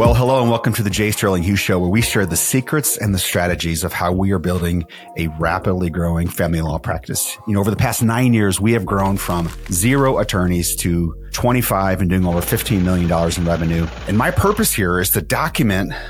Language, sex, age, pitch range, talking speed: English, male, 30-49, 85-115 Hz, 215 wpm